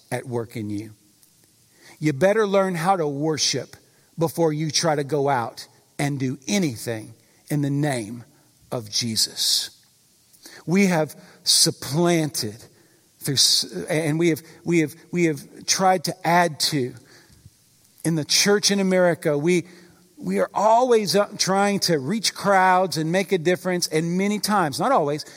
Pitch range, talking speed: 150-200 Hz, 145 wpm